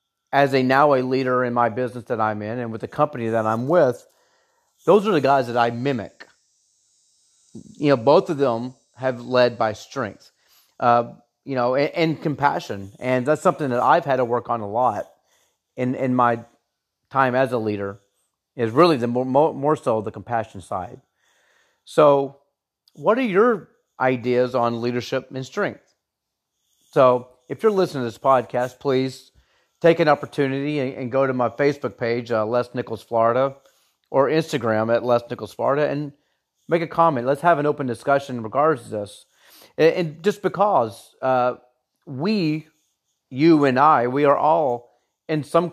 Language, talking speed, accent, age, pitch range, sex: English, 170 wpm, American, 30-49, 120-145 Hz, male